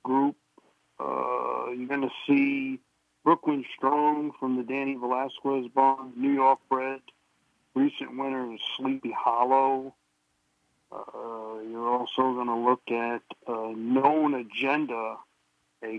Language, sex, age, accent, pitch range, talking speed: English, male, 50-69, American, 115-135 Hz, 120 wpm